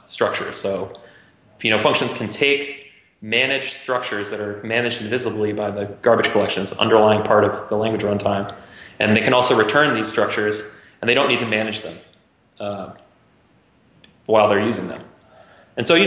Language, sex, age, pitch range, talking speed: English, male, 20-39, 105-120 Hz, 170 wpm